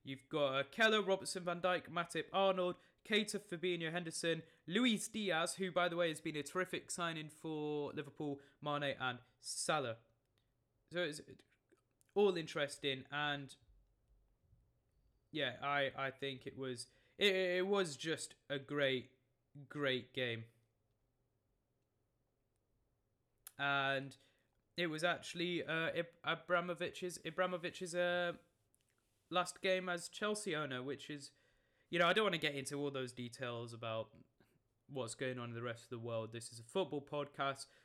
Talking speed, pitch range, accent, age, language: 140 wpm, 125-175 Hz, British, 20-39, English